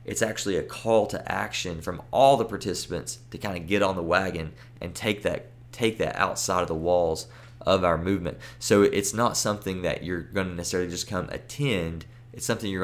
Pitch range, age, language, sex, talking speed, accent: 85-115 Hz, 20-39, English, male, 200 wpm, American